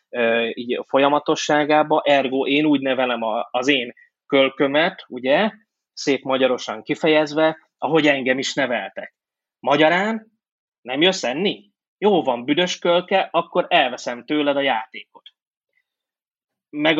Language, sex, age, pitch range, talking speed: Hungarian, male, 20-39, 130-160 Hz, 110 wpm